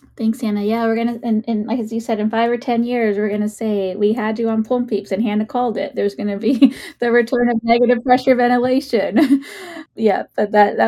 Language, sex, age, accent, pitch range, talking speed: English, female, 20-39, American, 190-225 Hz, 250 wpm